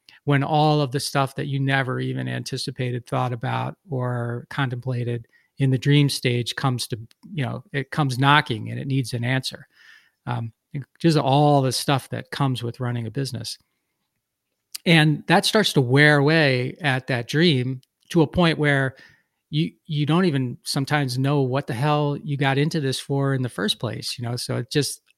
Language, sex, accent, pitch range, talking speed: English, male, American, 125-150 Hz, 185 wpm